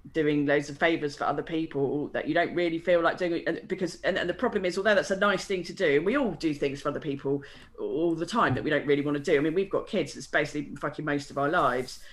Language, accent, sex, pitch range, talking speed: English, British, female, 150-200 Hz, 285 wpm